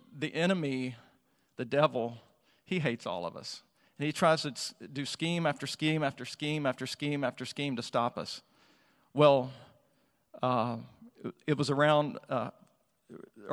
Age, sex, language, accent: 40-59, male, English, American